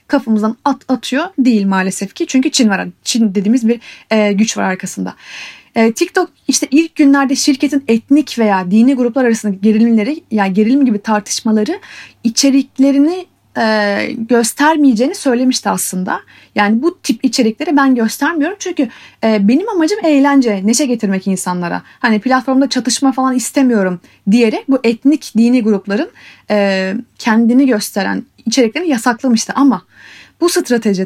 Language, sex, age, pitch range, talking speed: Turkish, female, 30-49, 210-275 Hz, 135 wpm